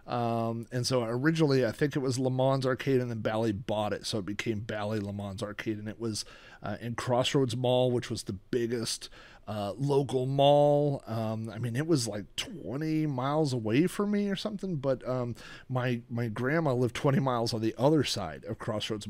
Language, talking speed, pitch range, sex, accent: English, 200 wpm, 110-135 Hz, male, American